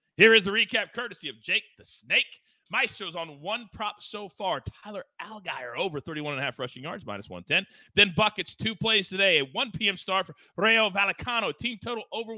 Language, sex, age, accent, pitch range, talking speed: English, male, 30-49, American, 160-215 Hz, 200 wpm